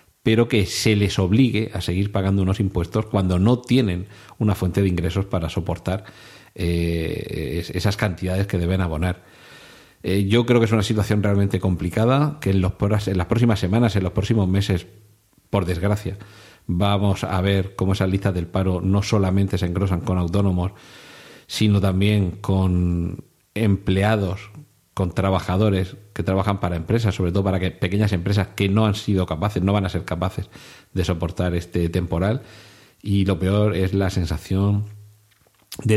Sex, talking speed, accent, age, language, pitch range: male, 160 wpm, Spanish, 40-59, Spanish, 95-110 Hz